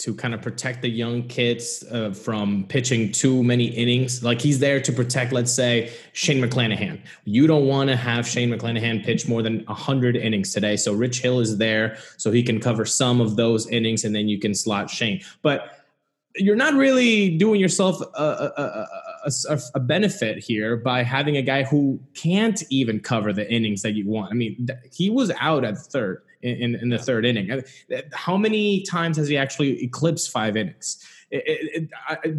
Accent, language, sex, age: American, English, male, 20-39